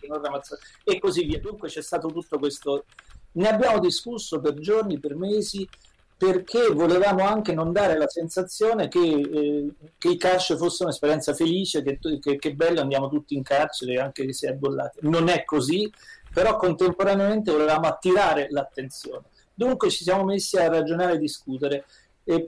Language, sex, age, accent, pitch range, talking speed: Italian, male, 40-59, native, 145-185 Hz, 155 wpm